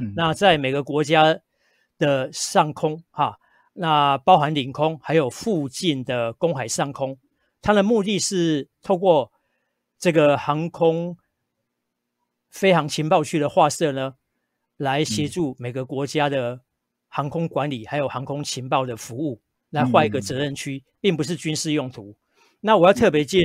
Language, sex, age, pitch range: Japanese, male, 50-69, 130-165 Hz